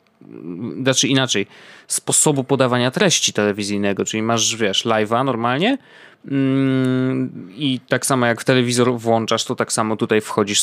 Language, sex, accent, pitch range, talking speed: Polish, male, native, 105-130 Hz, 125 wpm